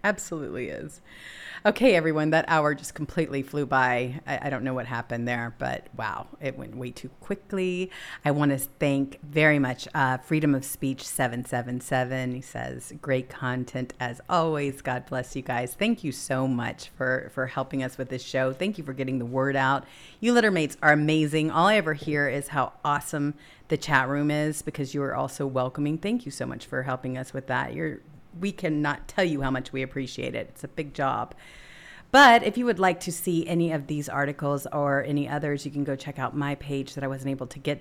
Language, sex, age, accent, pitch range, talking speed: English, female, 40-59, American, 135-160 Hz, 210 wpm